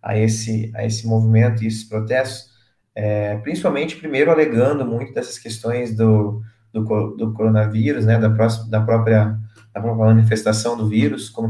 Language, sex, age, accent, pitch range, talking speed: Portuguese, male, 20-39, Brazilian, 110-130 Hz, 155 wpm